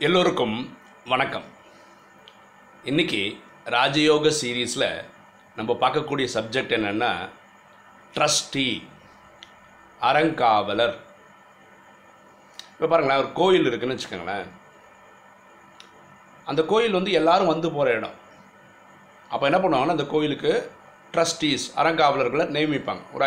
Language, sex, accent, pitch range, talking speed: Tamil, male, native, 145-185 Hz, 85 wpm